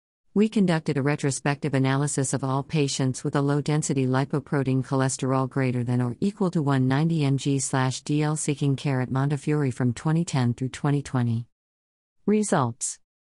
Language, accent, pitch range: English, American, 130-155 Hz